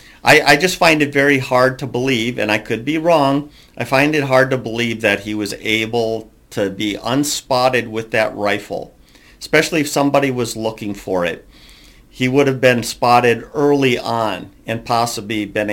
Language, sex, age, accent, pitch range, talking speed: English, male, 50-69, American, 105-135 Hz, 180 wpm